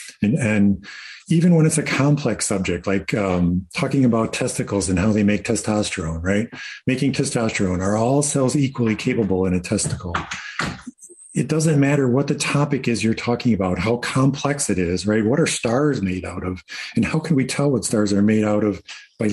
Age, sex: 50-69, male